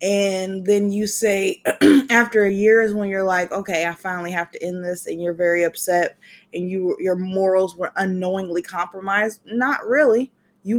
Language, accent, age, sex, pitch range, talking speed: English, American, 20-39, female, 180-225 Hz, 180 wpm